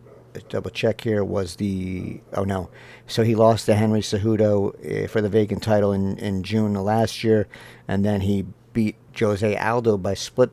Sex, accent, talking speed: male, American, 180 wpm